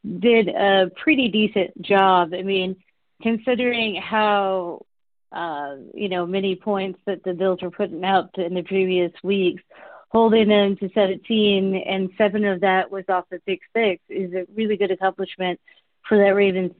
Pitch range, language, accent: 185-215 Hz, English, American